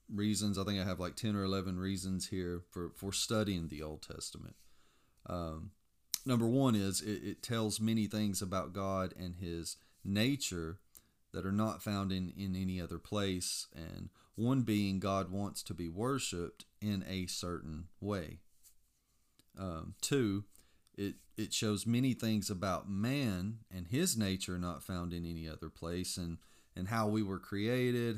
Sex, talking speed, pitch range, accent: male, 160 wpm, 85-105 Hz, American